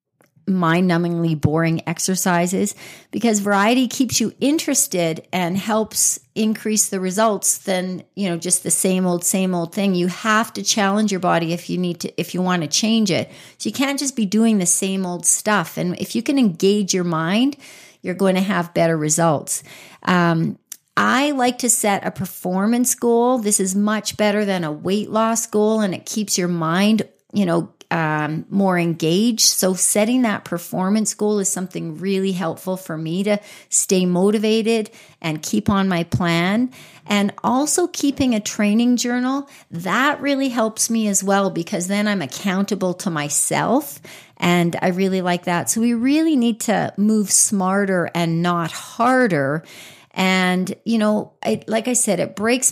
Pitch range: 175-220 Hz